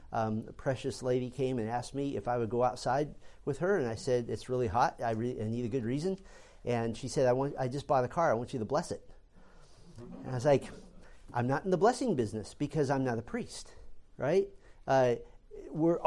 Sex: male